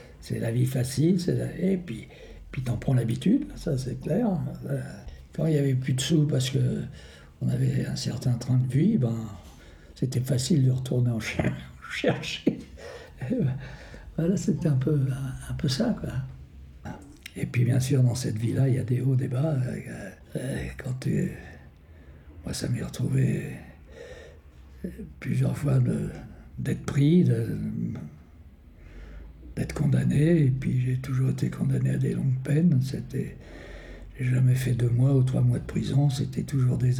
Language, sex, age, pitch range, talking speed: French, male, 60-79, 115-145 Hz, 160 wpm